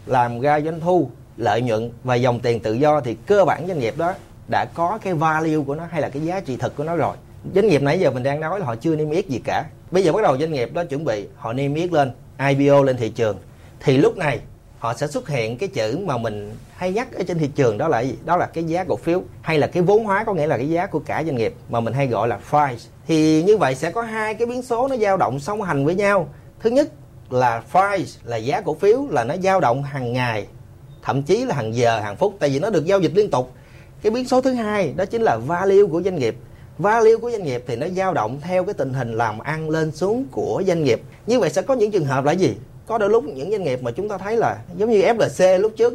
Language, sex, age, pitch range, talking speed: Vietnamese, male, 30-49, 130-190 Hz, 275 wpm